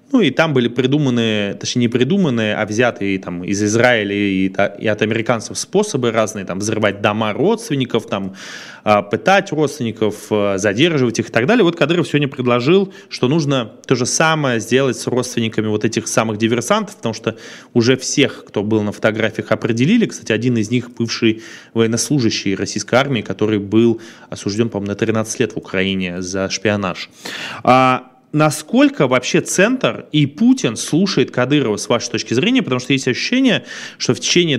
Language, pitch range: Russian, 105-130 Hz